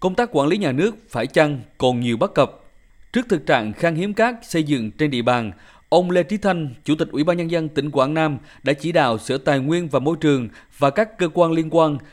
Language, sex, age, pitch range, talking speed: Vietnamese, male, 20-39, 135-180 Hz, 250 wpm